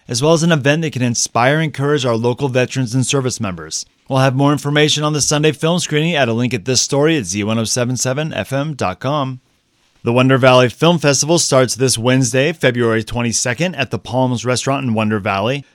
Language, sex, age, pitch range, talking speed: English, male, 30-49, 125-150 Hz, 190 wpm